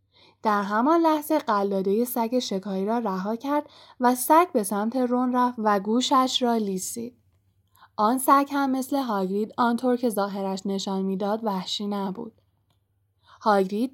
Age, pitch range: 10-29, 195-260 Hz